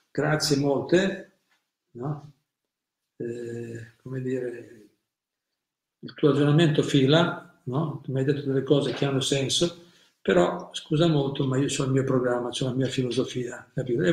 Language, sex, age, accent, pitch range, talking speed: Italian, male, 50-69, native, 130-150 Hz, 155 wpm